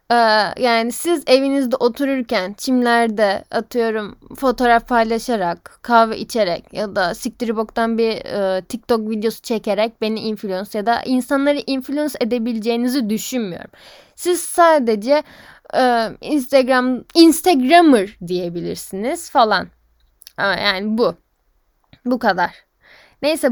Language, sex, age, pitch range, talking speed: Turkish, female, 10-29, 205-260 Hz, 100 wpm